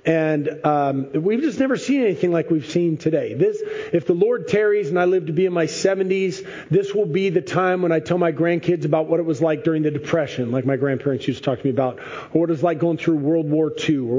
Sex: male